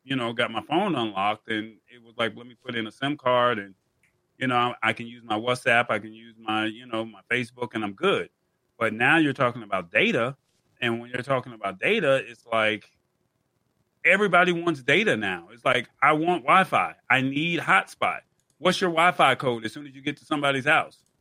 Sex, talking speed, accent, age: male, 210 wpm, American, 30-49